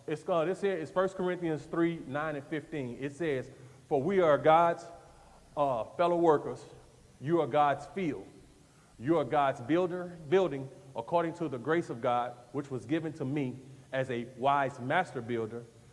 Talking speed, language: 155 wpm, English